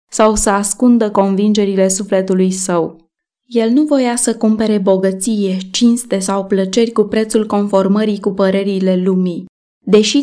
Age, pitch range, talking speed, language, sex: 20-39, 195-235 Hz, 130 wpm, Romanian, female